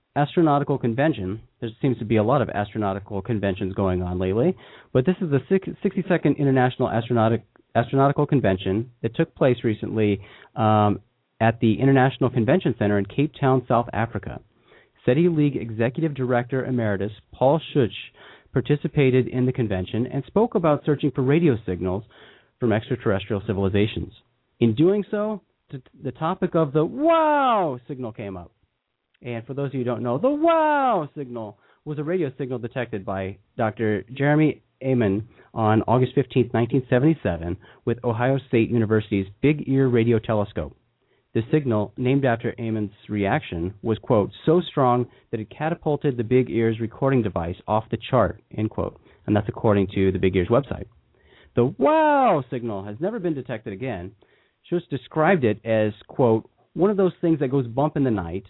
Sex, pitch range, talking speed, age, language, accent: male, 110-145 Hz, 160 wpm, 40-59, English, American